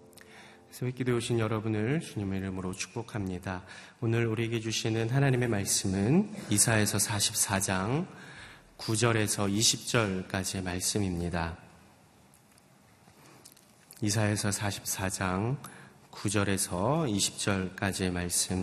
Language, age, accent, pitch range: Korean, 30-49, native, 95-120 Hz